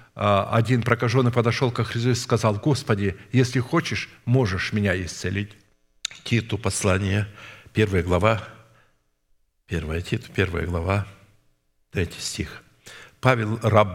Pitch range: 100-125 Hz